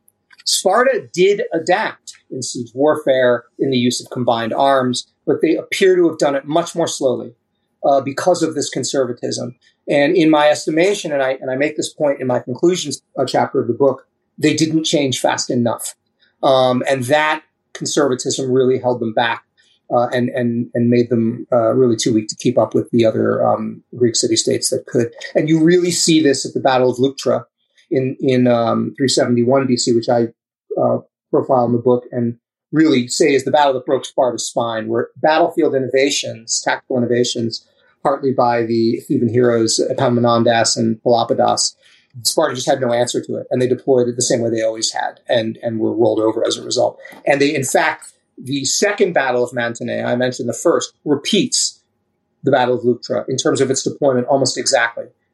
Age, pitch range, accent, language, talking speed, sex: 30-49, 120-140 Hz, American, English, 190 wpm, male